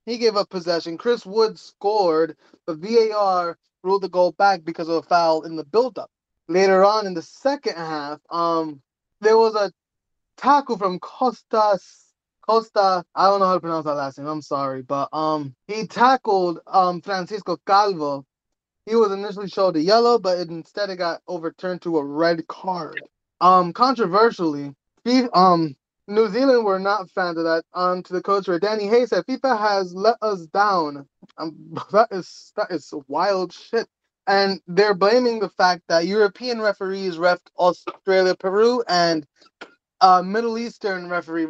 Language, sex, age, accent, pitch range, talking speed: English, male, 20-39, American, 165-210 Hz, 170 wpm